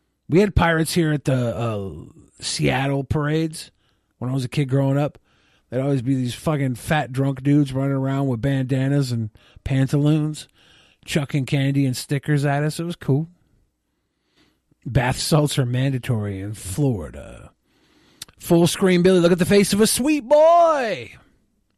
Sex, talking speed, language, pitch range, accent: male, 155 wpm, English, 125-150 Hz, American